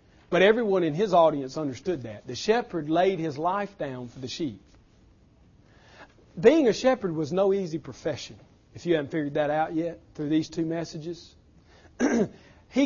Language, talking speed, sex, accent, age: English, 165 wpm, male, American, 40-59